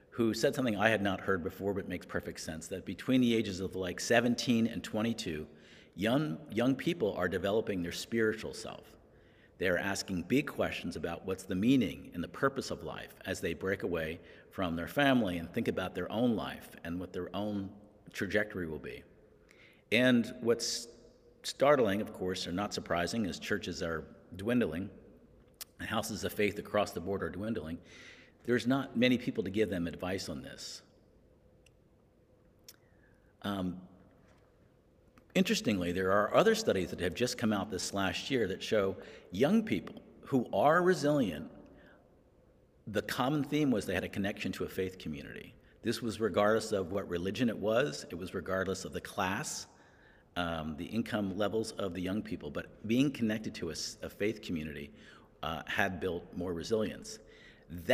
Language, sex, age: English, male, 50-69